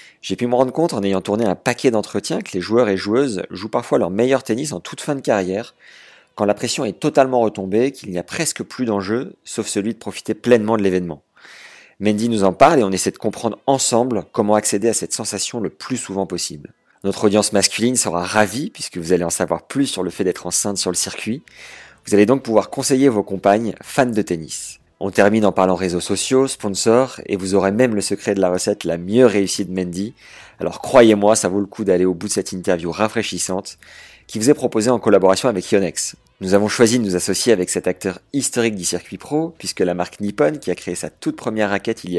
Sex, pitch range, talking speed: male, 95-120 Hz, 230 wpm